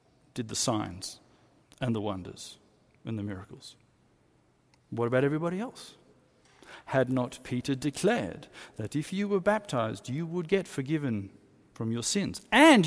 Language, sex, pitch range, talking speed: English, male, 110-165 Hz, 140 wpm